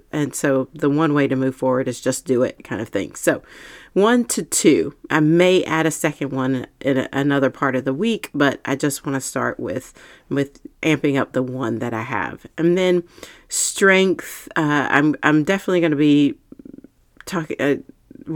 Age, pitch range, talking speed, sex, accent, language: 40-59, 135-170 Hz, 195 wpm, female, American, English